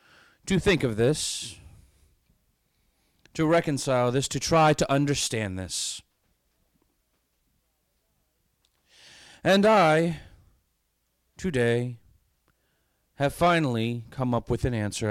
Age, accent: 30-49, American